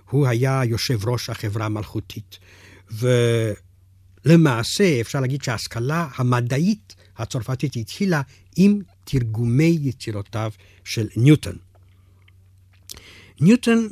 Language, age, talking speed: Hebrew, 60-79, 80 wpm